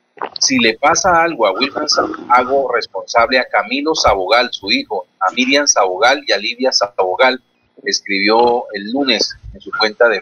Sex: male